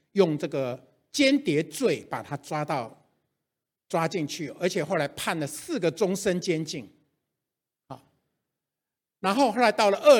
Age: 60-79